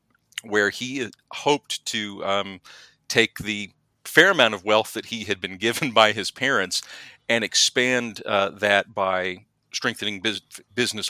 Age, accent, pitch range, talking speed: 40-59, American, 100-120 Hz, 145 wpm